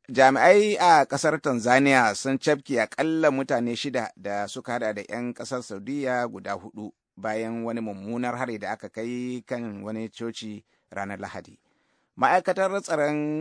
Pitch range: 110-130 Hz